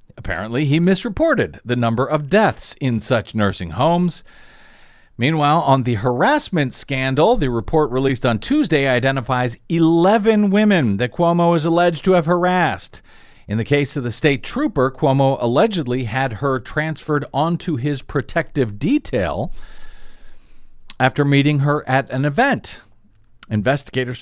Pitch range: 120-160 Hz